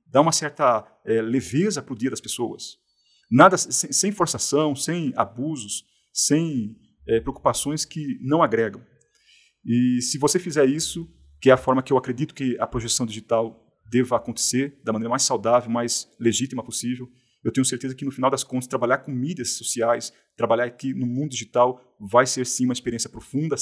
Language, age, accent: Portuguese, 40-59, Brazilian